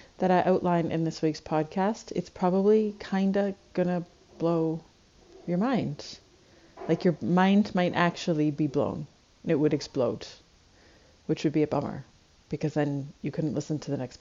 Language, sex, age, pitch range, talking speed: English, female, 30-49, 160-205 Hz, 160 wpm